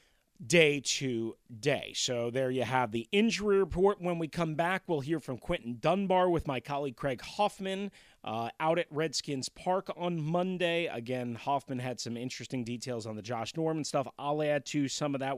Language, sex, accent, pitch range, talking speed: English, male, American, 120-170 Hz, 185 wpm